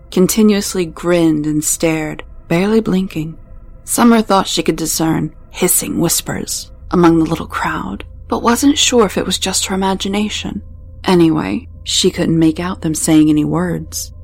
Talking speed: 150 wpm